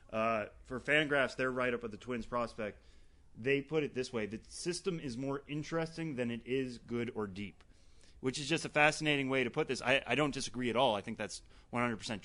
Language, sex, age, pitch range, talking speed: English, male, 30-49, 100-125 Hz, 225 wpm